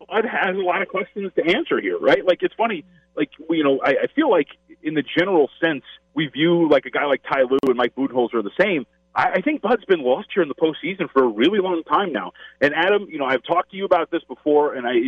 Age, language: 30-49, English